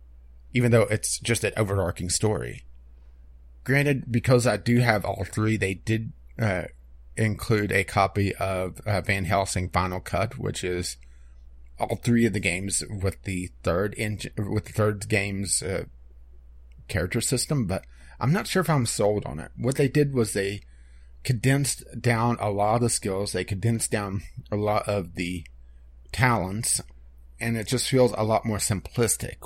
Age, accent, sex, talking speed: 30-49, American, male, 165 wpm